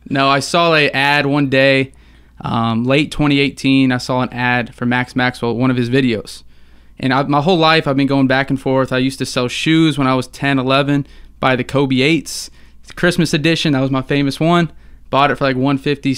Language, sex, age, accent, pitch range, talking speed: English, male, 20-39, American, 125-145 Hz, 220 wpm